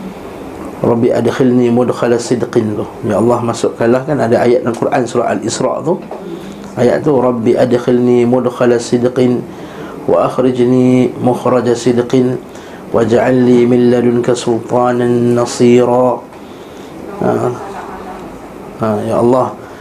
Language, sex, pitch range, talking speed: Malay, male, 120-135 Hz, 110 wpm